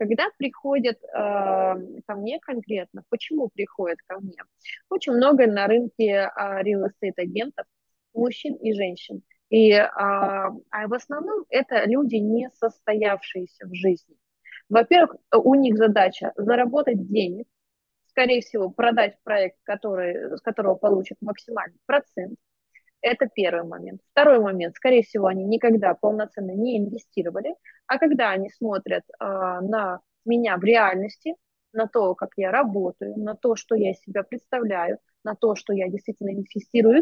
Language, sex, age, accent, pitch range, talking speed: Russian, female, 20-39, native, 195-240 Hz, 135 wpm